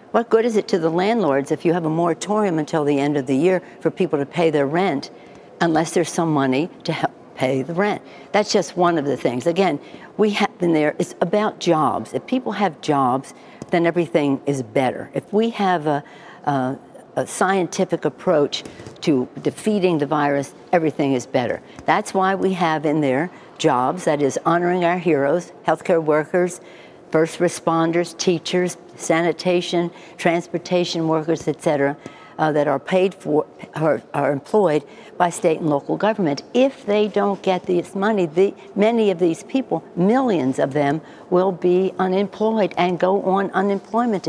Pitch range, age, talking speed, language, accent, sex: 150-190 Hz, 60-79, 170 wpm, English, American, female